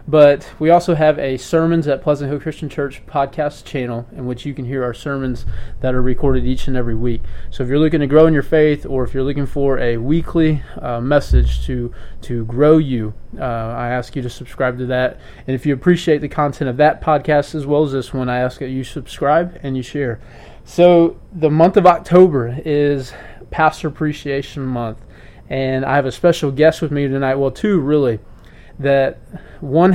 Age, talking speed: 20-39, 205 wpm